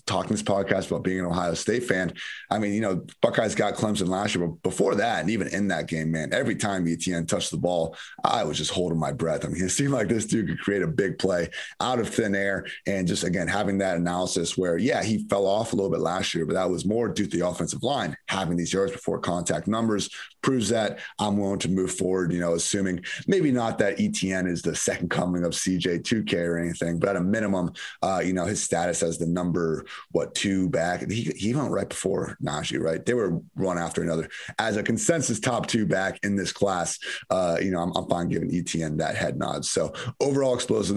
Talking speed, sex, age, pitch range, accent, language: 235 wpm, male, 30-49, 85-105 Hz, American, English